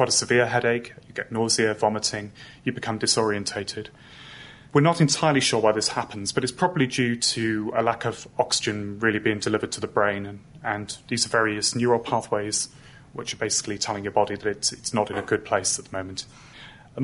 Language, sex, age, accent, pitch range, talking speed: English, male, 30-49, British, 105-130 Hz, 200 wpm